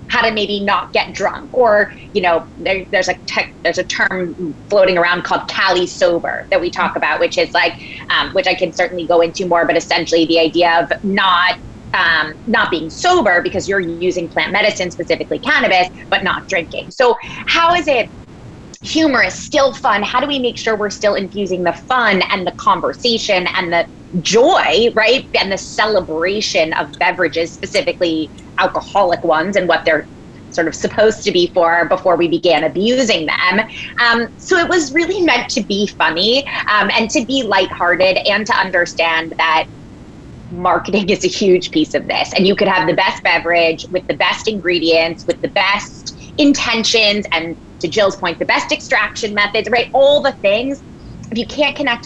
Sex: female